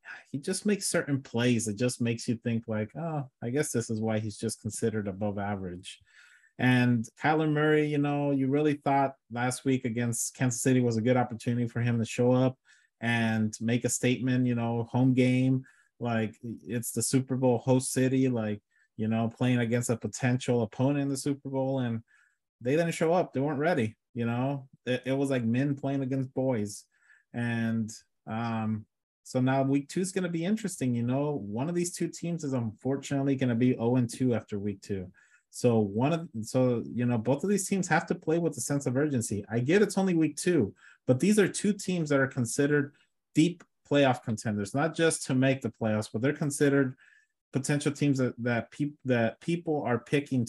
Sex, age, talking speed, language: male, 30-49, 205 wpm, English